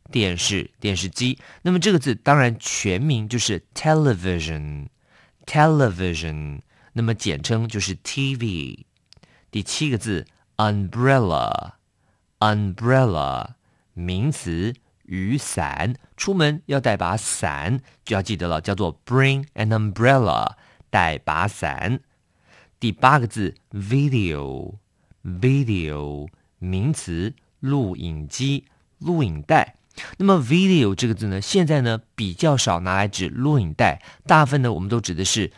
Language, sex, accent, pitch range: English, male, Chinese, 90-130 Hz